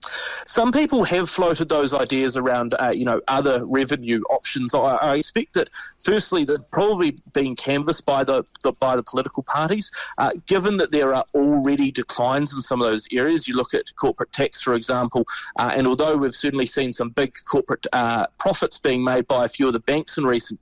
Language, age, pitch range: English, 30-49, 120-145 Hz